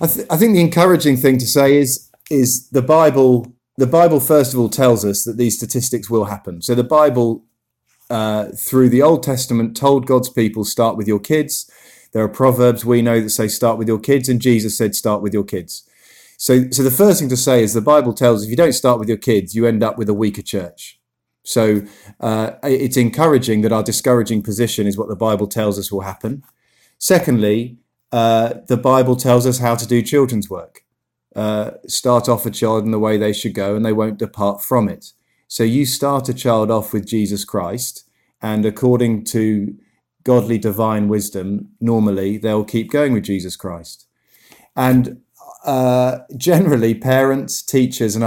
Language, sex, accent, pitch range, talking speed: English, male, British, 105-125 Hz, 195 wpm